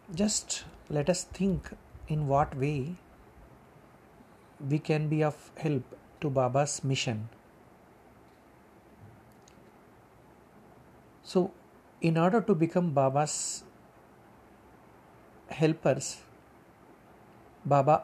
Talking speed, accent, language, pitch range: 75 wpm, native, Hindi, 135-175 Hz